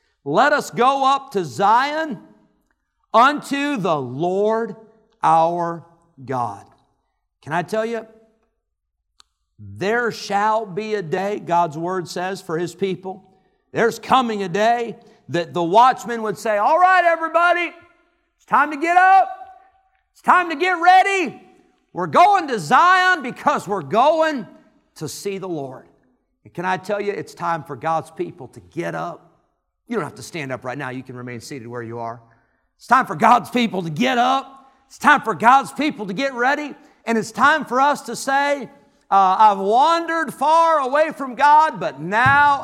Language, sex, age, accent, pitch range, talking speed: English, male, 50-69, American, 185-275 Hz, 165 wpm